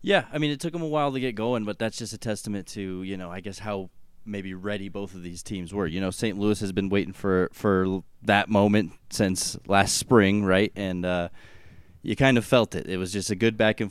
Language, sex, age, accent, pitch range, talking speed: English, male, 20-39, American, 95-115 Hz, 250 wpm